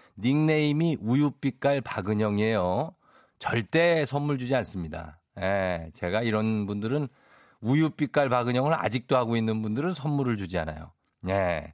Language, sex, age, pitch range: Korean, male, 50-69, 105-155 Hz